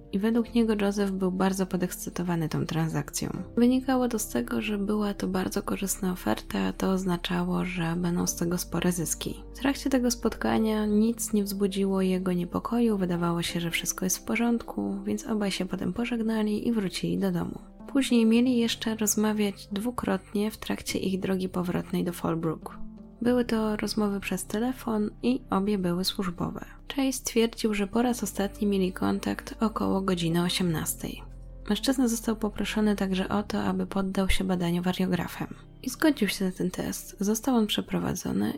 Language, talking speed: Polish, 165 wpm